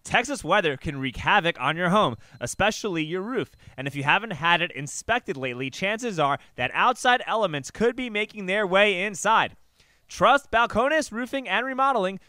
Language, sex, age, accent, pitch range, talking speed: English, male, 20-39, American, 165-230 Hz, 170 wpm